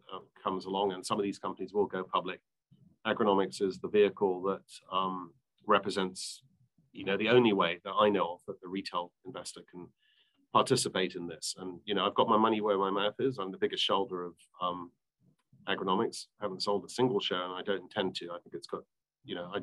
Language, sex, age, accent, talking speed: English, male, 40-59, British, 215 wpm